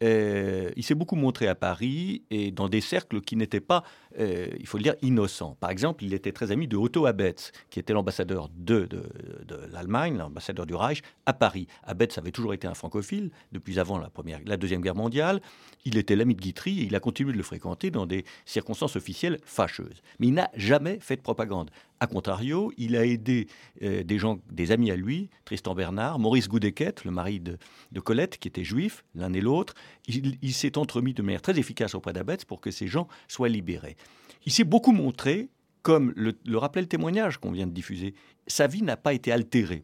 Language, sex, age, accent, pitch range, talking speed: French, male, 50-69, French, 95-140 Hz, 215 wpm